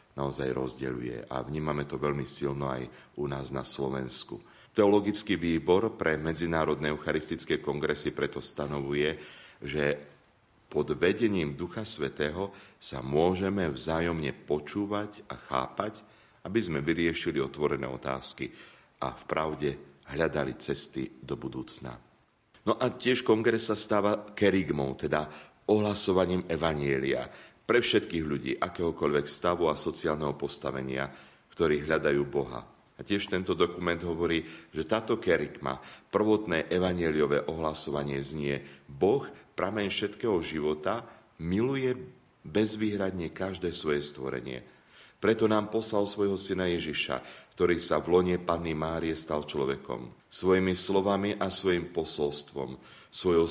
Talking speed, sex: 120 wpm, male